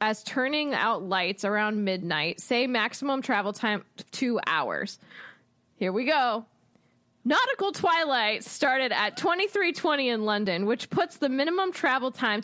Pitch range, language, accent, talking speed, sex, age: 210-275 Hz, English, American, 135 wpm, female, 20-39